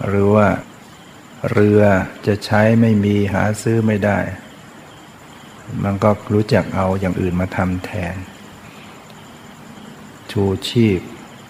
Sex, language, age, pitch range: male, Thai, 60-79, 100-110 Hz